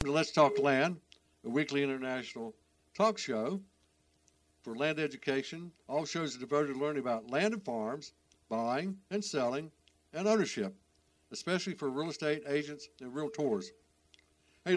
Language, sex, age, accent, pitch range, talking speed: English, male, 60-79, American, 120-155 Hz, 140 wpm